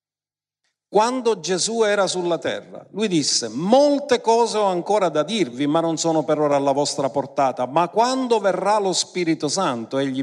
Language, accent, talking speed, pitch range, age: Italian, native, 165 wpm, 135-195 Hz, 50-69